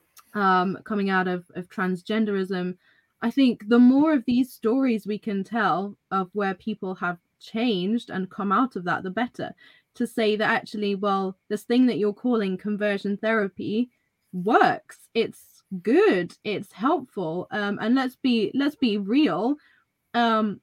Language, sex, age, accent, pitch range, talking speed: English, female, 20-39, British, 195-235 Hz, 155 wpm